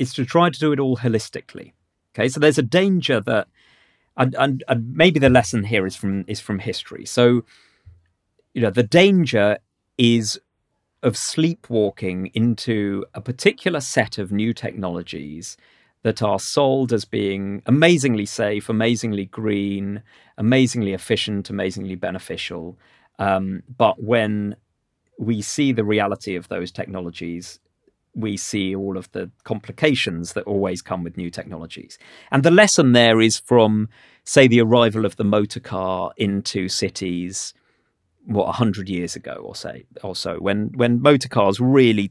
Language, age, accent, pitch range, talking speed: English, 40-59, British, 100-130 Hz, 150 wpm